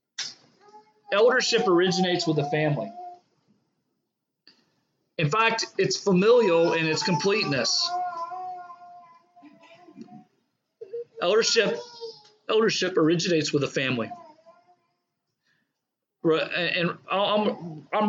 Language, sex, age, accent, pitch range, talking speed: English, male, 40-59, American, 165-225 Hz, 70 wpm